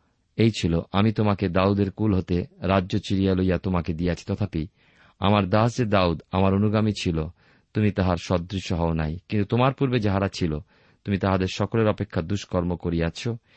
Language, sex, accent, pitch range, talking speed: Bengali, male, native, 90-110 Hz, 150 wpm